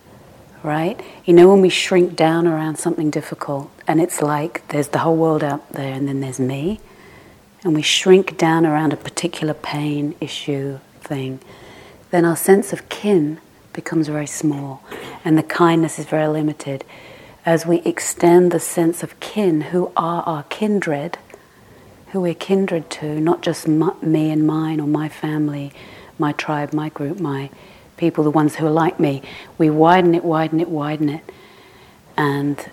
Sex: female